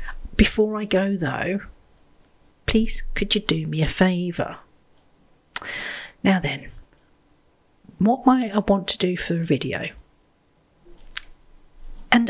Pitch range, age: 160-205 Hz, 40-59